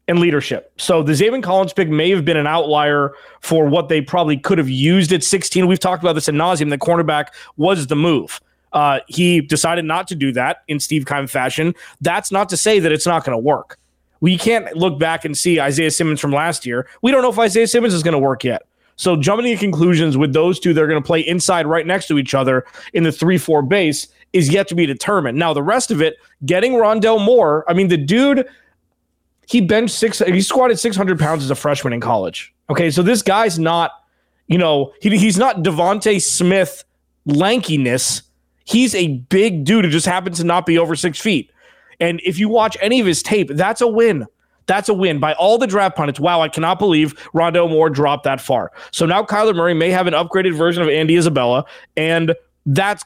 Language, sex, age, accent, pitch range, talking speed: English, male, 20-39, American, 155-195 Hz, 225 wpm